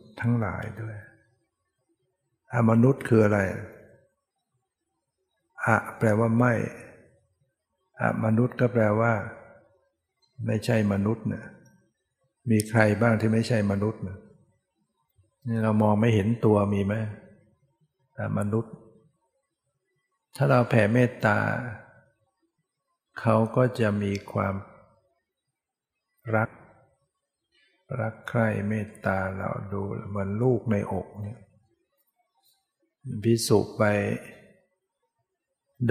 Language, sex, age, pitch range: Thai, male, 60-79, 105-125 Hz